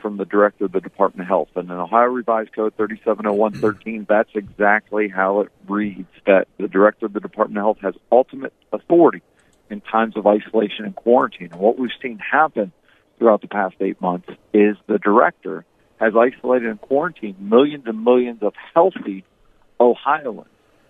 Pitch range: 105-125 Hz